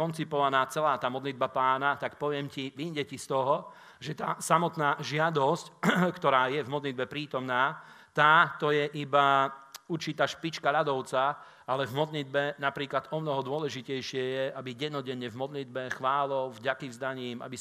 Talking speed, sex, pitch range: 145 wpm, male, 130-145 Hz